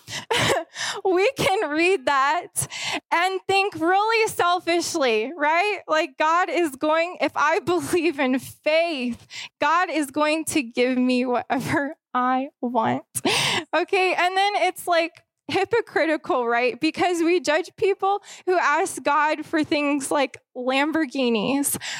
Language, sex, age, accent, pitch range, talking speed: English, female, 20-39, American, 280-360 Hz, 125 wpm